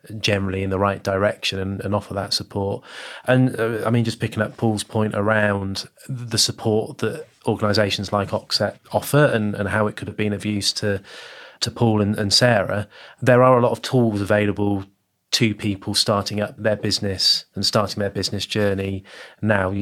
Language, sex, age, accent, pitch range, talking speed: English, male, 20-39, British, 100-110 Hz, 185 wpm